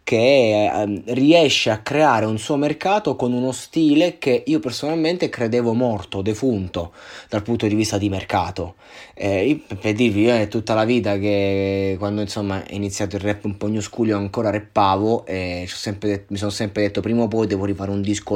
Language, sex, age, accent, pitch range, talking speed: Italian, male, 20-39, native, 100-130 Hz, 175 wpm